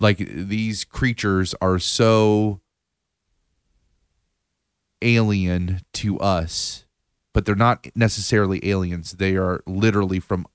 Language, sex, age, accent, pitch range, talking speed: English, male, 30-49, American, 85-100 Hz, 95 wpm